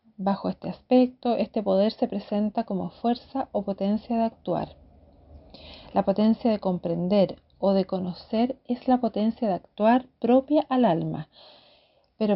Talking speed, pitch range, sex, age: 140 wpm, 195-250 Hz, female, 40-59